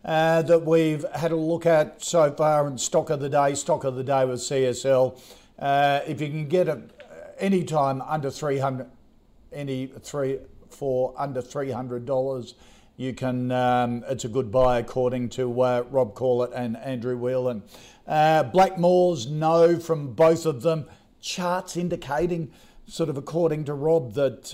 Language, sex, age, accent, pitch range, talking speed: English, male, 50-69, Australian, 130-155 Hz, 165 wpm